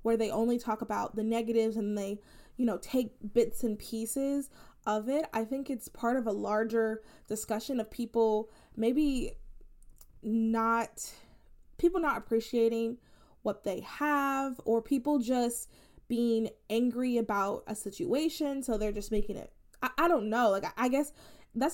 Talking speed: 155 wpm